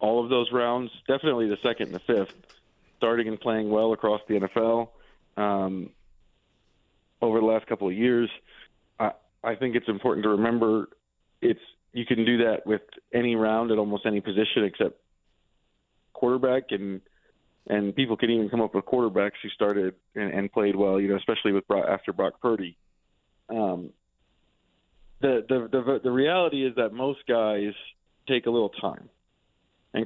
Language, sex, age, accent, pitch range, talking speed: English, male, 40-59, American, 105-125 Hz, 165 wpm